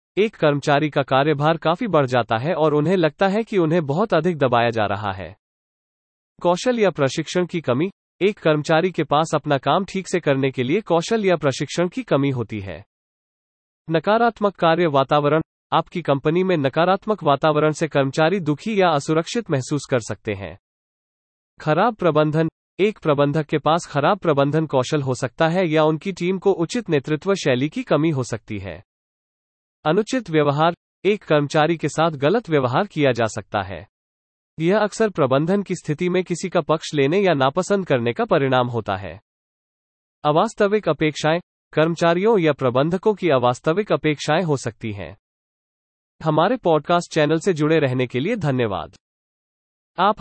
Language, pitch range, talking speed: English, 135-180 Hz, 125 wpm